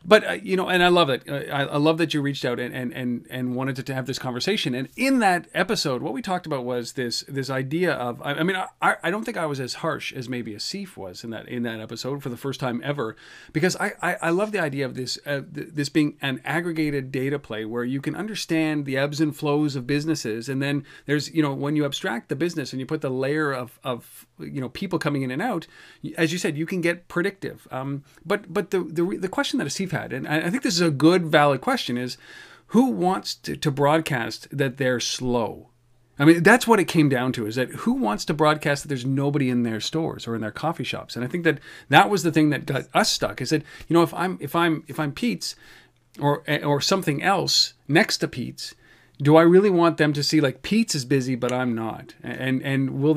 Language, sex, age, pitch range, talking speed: English, male, 40-59, 130-165 Hz, 250 wpm